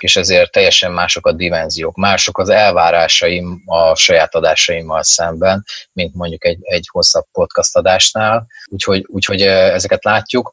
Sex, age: male, 30-49